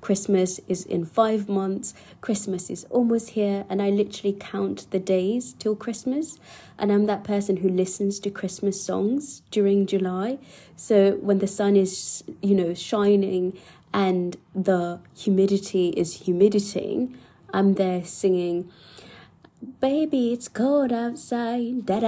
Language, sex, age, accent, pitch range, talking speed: English, female, 20-39, British, 185-225 Hz, 130 wpm